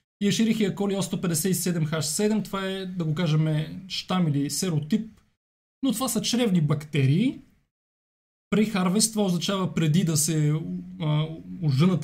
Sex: male